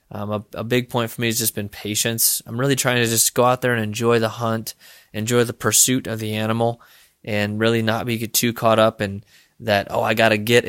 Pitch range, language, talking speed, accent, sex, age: 105-120 Hz, English, 240 wpm, American, male, 20-39